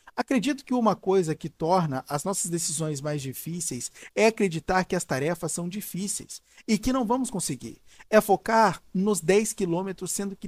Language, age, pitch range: Portuguese, 50-69, 155-215 Hz